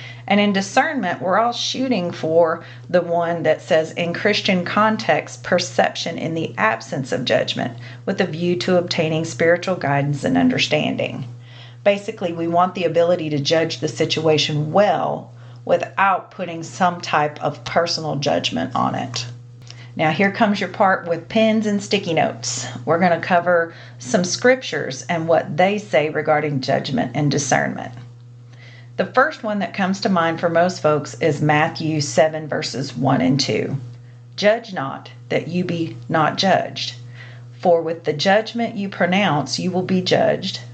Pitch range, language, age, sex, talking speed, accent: 135-195 Hz, English, 40-59, female, 155 wpm, American